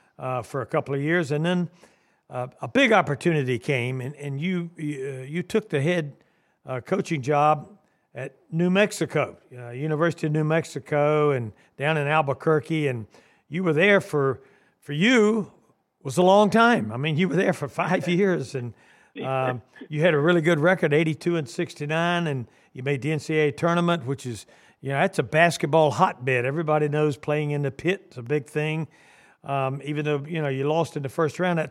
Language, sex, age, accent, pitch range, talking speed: English, male, 60-79, American, 140-170 Hz, 195 wpm